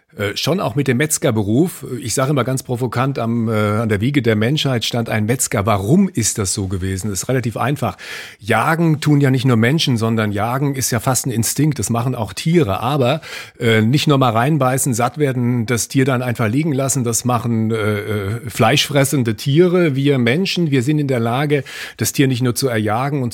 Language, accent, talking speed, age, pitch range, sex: German, German, 210 wpm, 40-59, 110-145 Hz, male